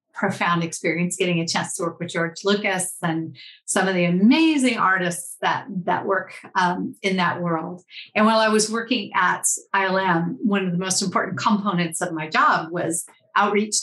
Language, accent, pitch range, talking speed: English, American, 175-225 Hz, 180 wpm